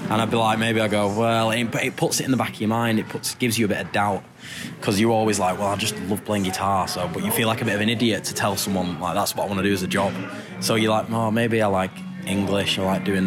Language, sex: English, male